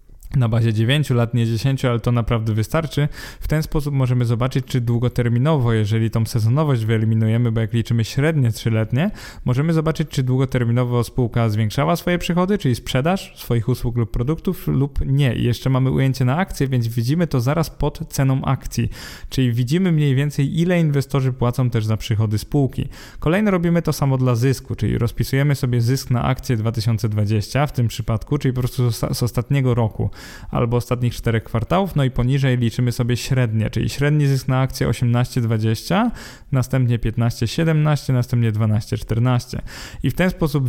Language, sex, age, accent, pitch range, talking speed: Polish, male, 20-39, native, 115-140 Hz, 165 wpm